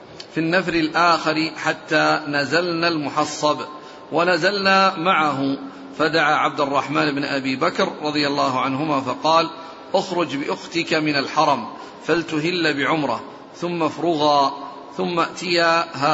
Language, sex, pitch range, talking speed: Arabic, male, 150-175 Hz, 105 wpm